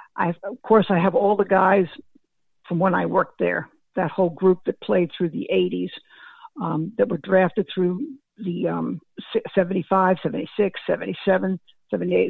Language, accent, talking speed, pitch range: English, American, 155 wpm, 180-210 Hz